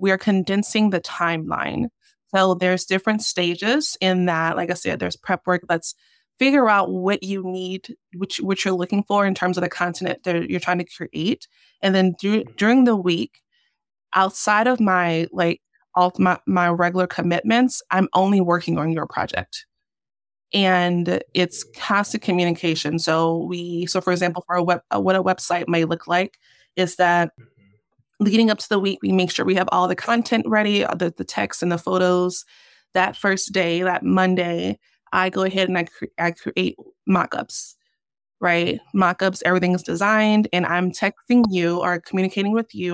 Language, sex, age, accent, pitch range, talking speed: English, female, 20-39, American, 175-200 Hz, 175 wpm